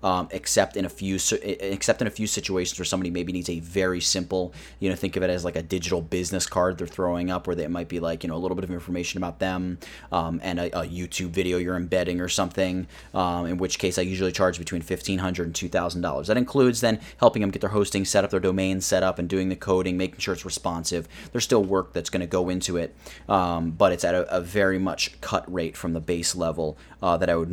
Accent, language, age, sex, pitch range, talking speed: American, English, 30-49, male, 90-110 Hz, 250 wpm